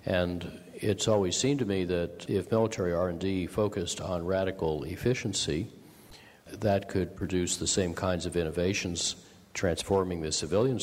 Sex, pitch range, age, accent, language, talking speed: male, 85-105 Hz, 50-69, American, English, 140 wpm